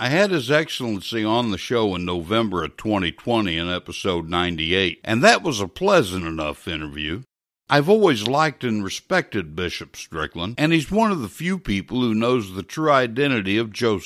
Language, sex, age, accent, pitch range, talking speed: English, male, 60-79, American, 100-155 Hz, 180 wpm